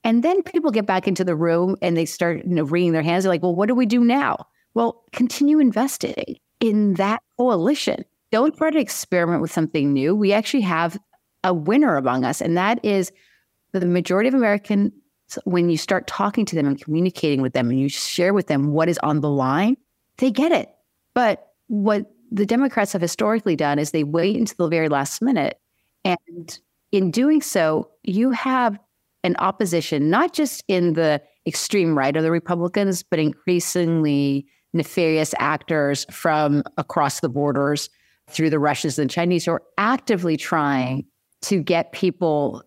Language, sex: English, female